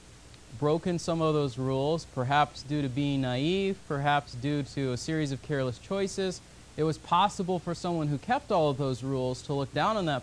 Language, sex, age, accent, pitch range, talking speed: English, male, 40-59, American, 130-185 Hz, 200 wpm